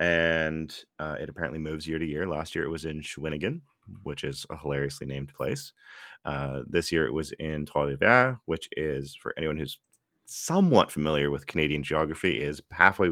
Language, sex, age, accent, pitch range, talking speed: English, male, 30-49, American, 75-100 Hz, 180 wpm